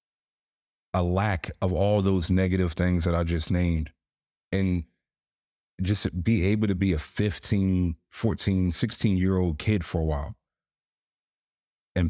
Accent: American